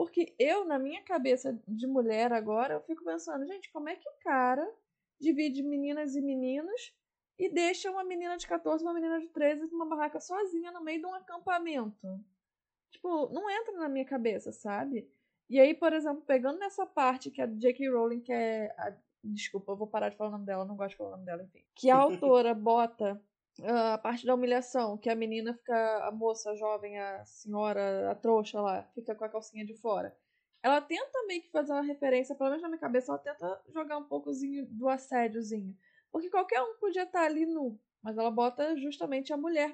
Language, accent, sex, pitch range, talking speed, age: Portuguese, Brazilian, female, 225-315 Hz, 205 wpm, 20-39